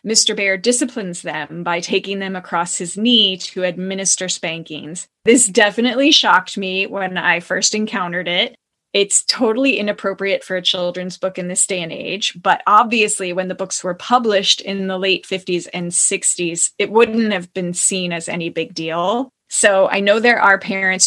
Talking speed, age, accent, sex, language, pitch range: 175 wpm, 20-39, American, female, English, 185-225 Hz